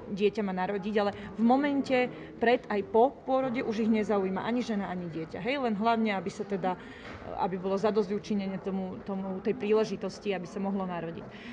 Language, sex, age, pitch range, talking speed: Slovak, female, 30-49, 195-220 Hz, 170 wpm